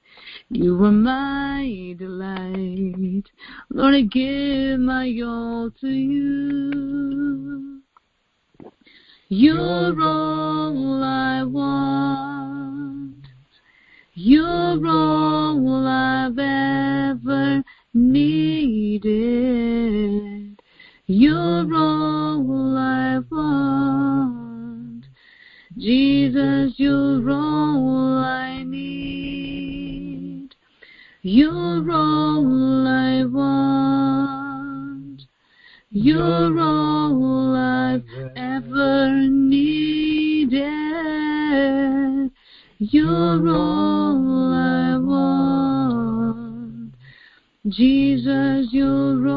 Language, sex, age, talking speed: English, female, 30-49, 55 wpm